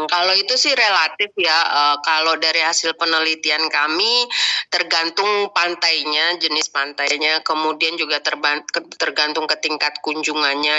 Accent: native